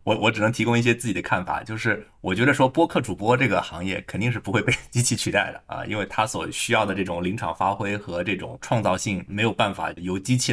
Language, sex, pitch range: Chinese, male, 100-130 Hz